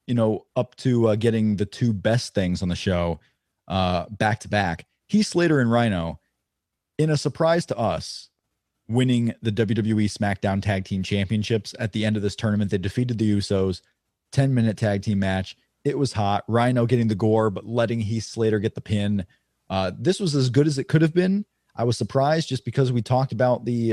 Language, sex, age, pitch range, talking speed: English, male, 30-49, 100-130 Hz, 200 wpm